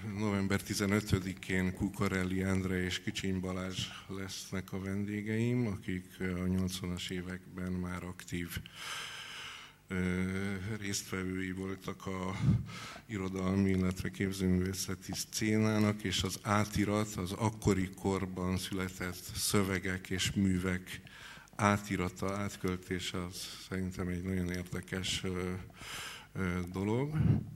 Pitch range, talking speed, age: 90-100 Hz, 95 wpm, 50-69